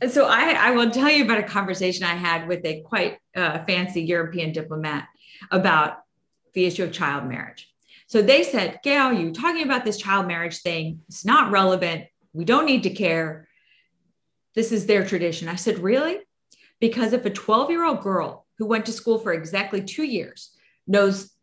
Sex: female